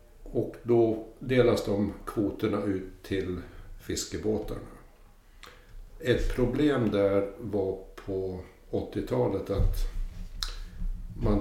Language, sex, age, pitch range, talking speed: Swedish, male, 60-79, 90-105 Hz, 85 wpm